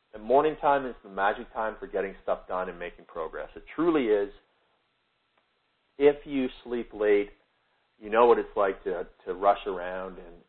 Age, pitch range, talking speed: 40-59, 95-140 Hz, 175 wpm